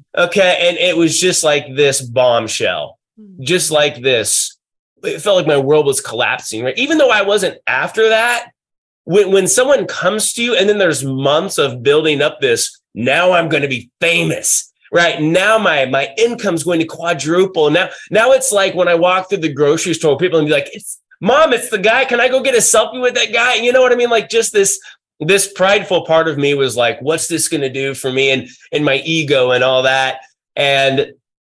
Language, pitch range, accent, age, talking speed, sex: English, 140-200 Hz, American, 30-49, 215 wpm, male